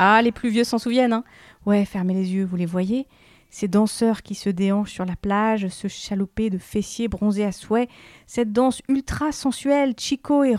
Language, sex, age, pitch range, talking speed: French, female, 40-59, 185-225 Hz, 200 wpm